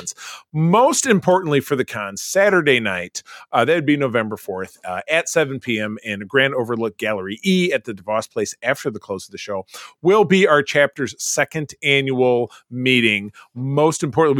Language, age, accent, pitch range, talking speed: English, 30-49, American, 100-140 Hz, 165 wpm